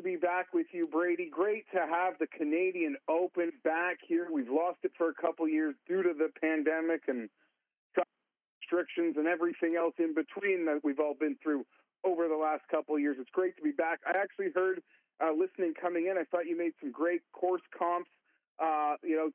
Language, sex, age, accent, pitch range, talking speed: English, male, 40-59, American, 160-215 Hz, 200 wpm